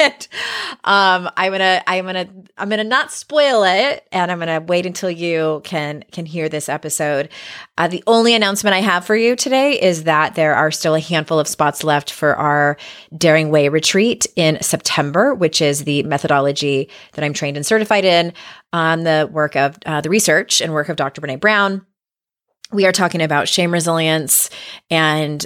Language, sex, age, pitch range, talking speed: English, female, 30-49, 150-195 Hz, 180 wpm